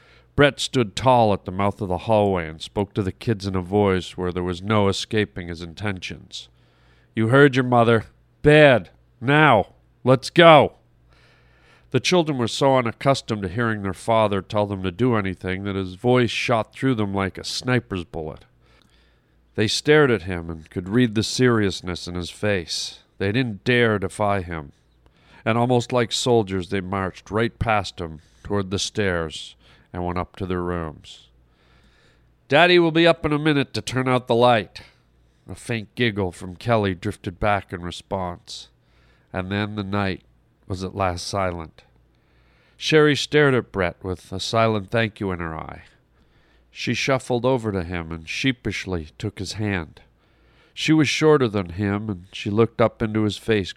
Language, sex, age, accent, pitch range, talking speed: English, male, 40-59, American, 90-115 Hz, 170 wpm